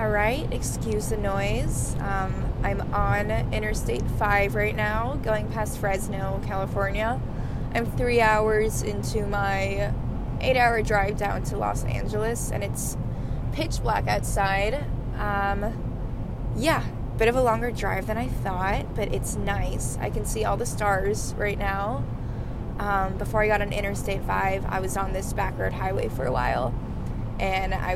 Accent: American